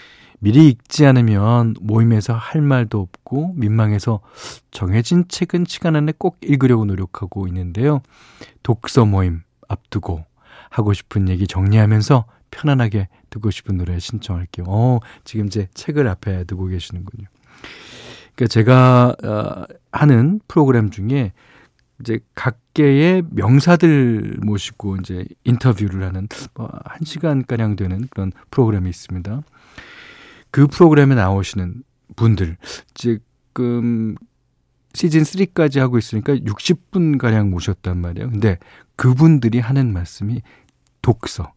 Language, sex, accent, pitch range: Korean, male, native, 105-140 Hz